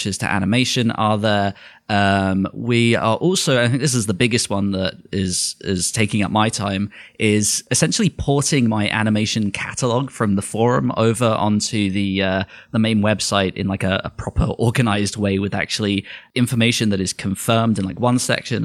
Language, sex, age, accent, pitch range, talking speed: English, male, 20-39, British, 100-120 Hz, 175 wpm